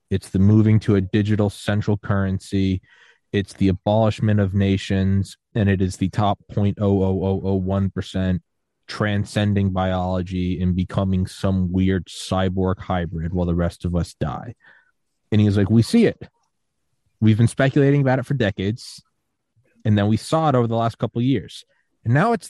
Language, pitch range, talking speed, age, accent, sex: English, 100-145 Hz, 180 wpm, 20-39, American, male